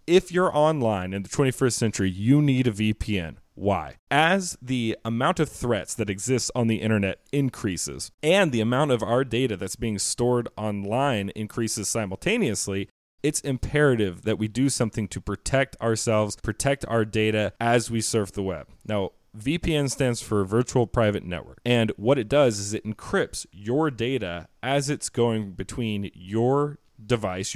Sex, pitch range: male, 105-130 Hz